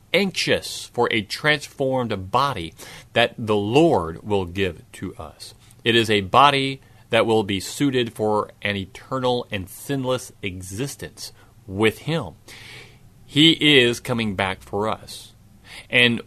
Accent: American